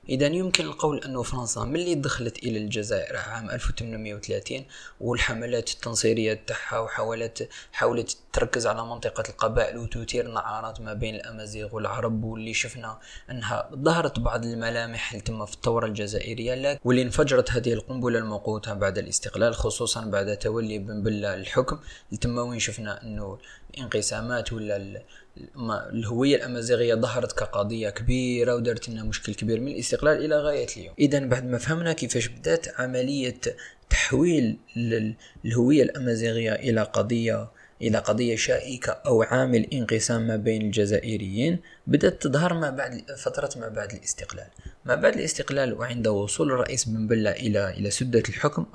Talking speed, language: 135 wpm, Arabic